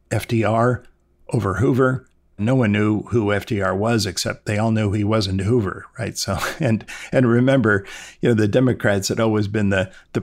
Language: English